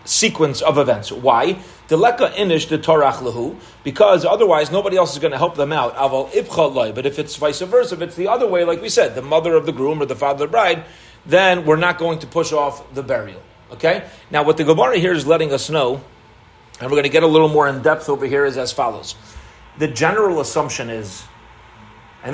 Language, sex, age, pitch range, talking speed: English, male, 30-49, 140-175 Hz, 210 wpm